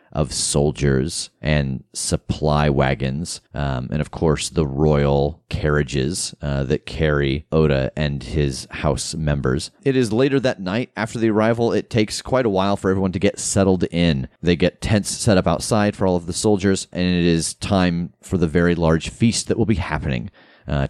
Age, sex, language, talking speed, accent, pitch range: 30-49, male, English, 185 wpm, American, 75-95 Hz